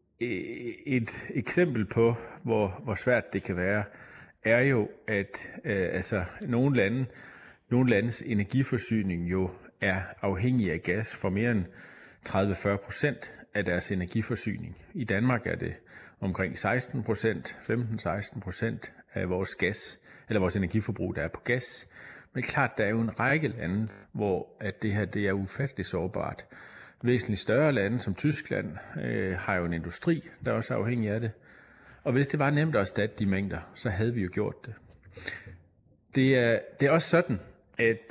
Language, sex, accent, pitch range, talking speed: Danish, male, native, 95-120 Hz, 160 wpm